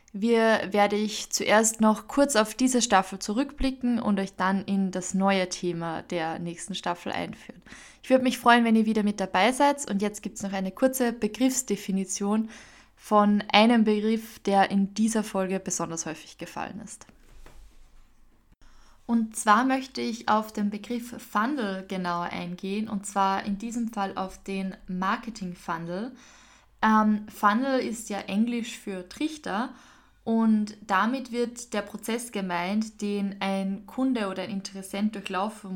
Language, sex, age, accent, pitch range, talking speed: German, female, 20-39, German, 190-225 Hz, 150 wpm